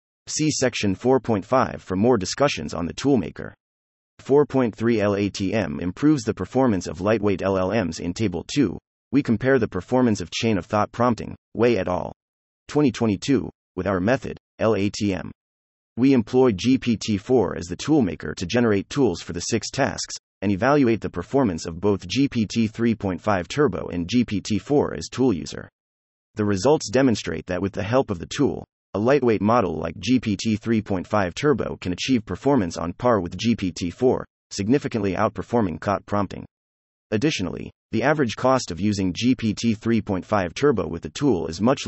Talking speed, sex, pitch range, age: 150 wpm, male, 90-120 Hz, 30-49